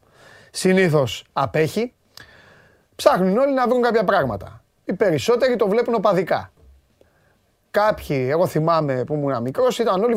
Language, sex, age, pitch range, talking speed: Greek, male, 30-49, 130-205 Hz, 125 wpm